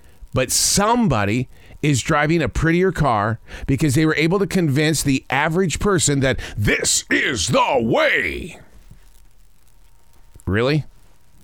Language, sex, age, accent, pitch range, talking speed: English, male, 50-69, American, 100-145 Hz, 115 wpm